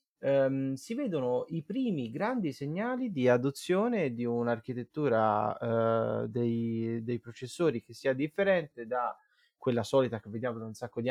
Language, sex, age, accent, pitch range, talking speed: Italian, male, 30-49, native, 115-160 Hz, 145 wpm